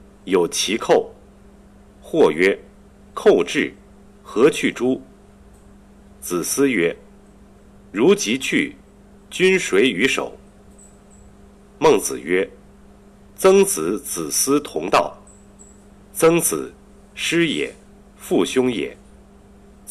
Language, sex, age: Chinese, male, 50-69